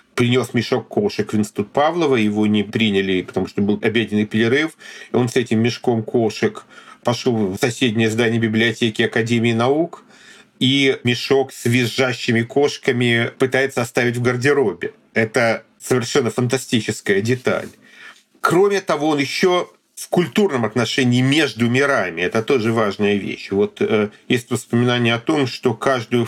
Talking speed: 135 wpm